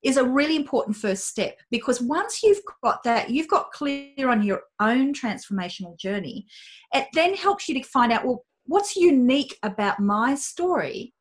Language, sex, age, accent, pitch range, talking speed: English, female, 40-59, Australian, 210-275 Hz, 170 wpm